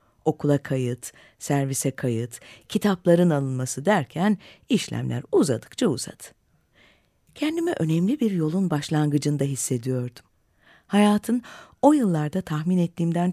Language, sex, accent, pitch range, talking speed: Turkish, female, native, 130-185 Hz, 95 wpm